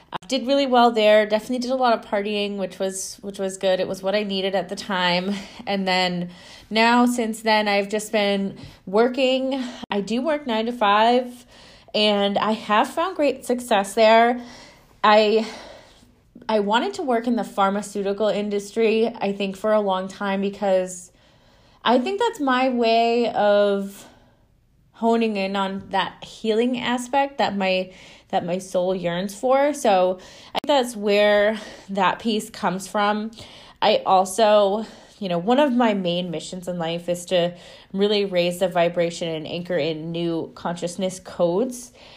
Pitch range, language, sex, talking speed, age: 190-230 Hz, English, female, 160 wpm, 20-39